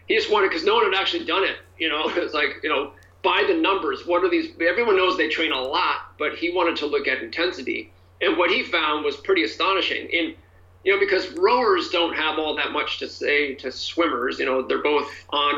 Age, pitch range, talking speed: 40-59, 140-180 Hz, 235 wpm